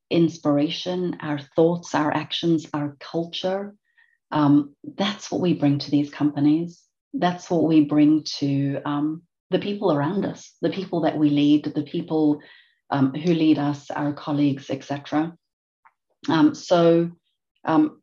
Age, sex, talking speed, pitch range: 30-49, female, 135 wpm, 150-175 Hz